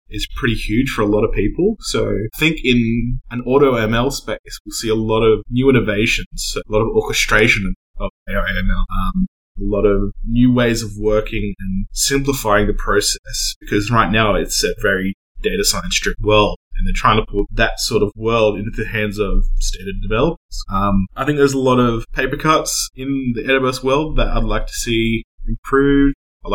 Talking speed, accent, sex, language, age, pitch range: 190 wpm, Australian, male, English, 20-39, 100-120 Hz